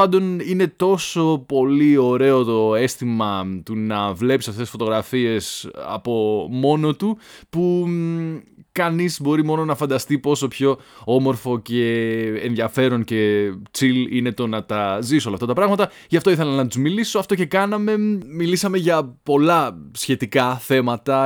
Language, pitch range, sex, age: Greek, 115-155 Hz, male, 20-39